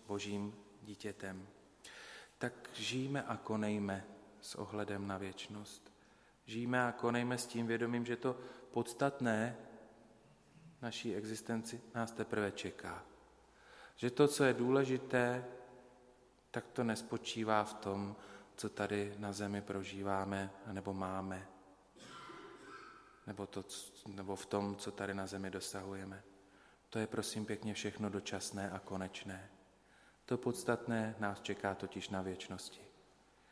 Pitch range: 100-115 Hz